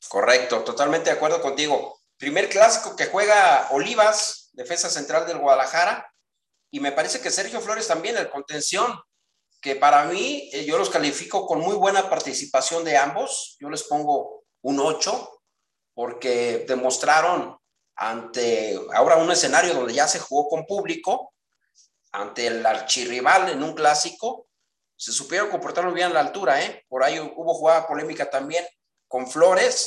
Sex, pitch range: male, 140-205 Hz